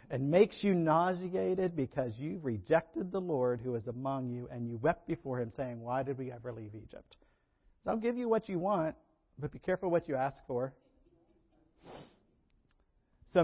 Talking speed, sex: 180 wpm, male